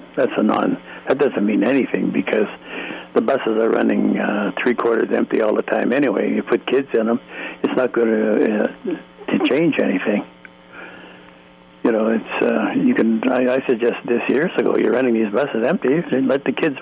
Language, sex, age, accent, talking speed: English, male, 60-79, American, 195 wpm